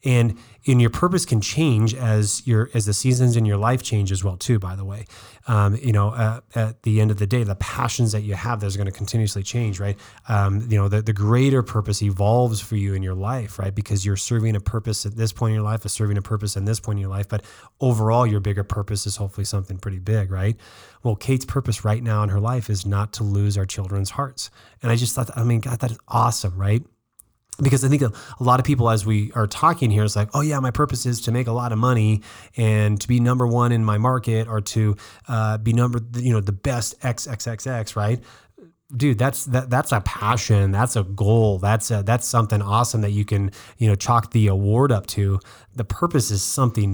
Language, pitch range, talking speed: English, 105-120 Hz, 240 wpm